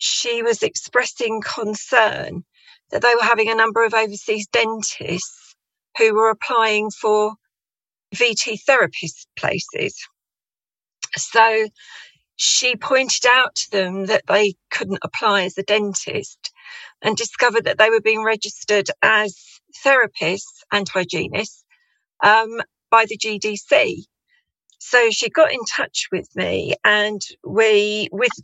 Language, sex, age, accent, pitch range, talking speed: English, female, 40-59, British, 205-245 Hz, 120 wpm